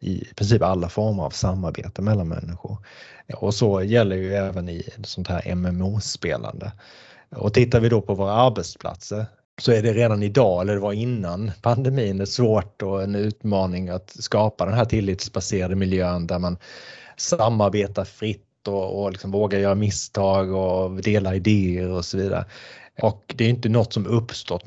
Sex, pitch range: male, 90-110 Hz